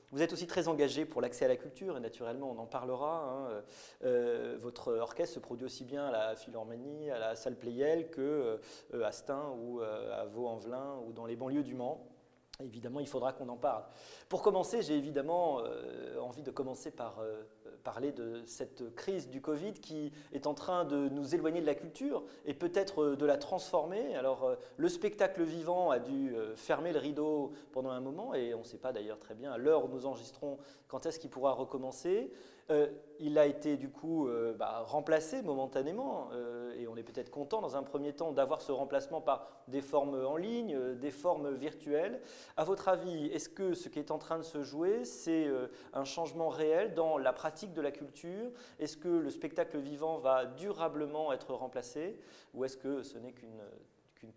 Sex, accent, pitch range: male, French, 130-165 Hz